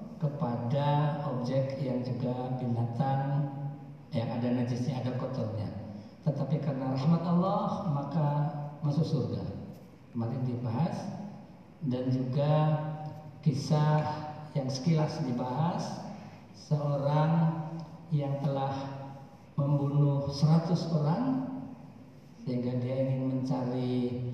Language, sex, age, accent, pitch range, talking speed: Indonesian, male, 50-69, native, 125-150 Hz, 85 wpm